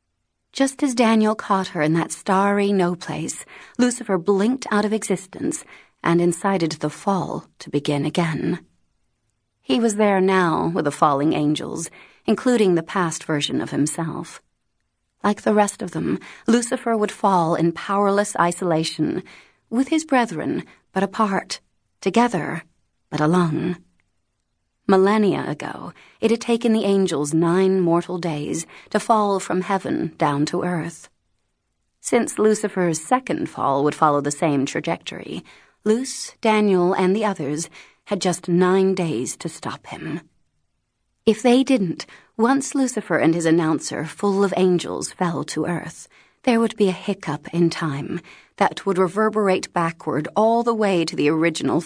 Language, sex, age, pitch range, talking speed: English, female, 30-49, 165-210 Hz, 145 wpm